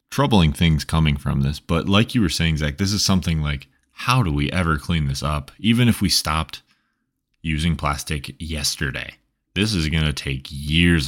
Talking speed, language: 190 wpm, English